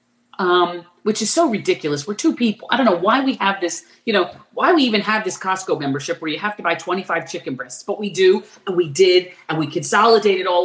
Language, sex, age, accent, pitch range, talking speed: English, female, 40-59, American, 190-280 Hz, 235 wpm